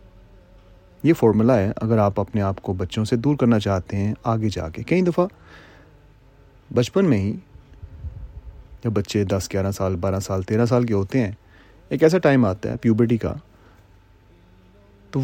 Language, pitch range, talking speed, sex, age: Urdu, 95-115 Hz, 165 wpm, male, 30-49